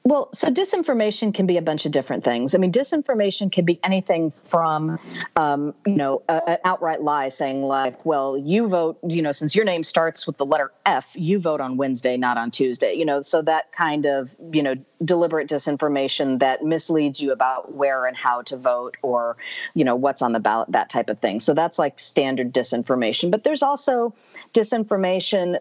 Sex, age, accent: female, 40-59, American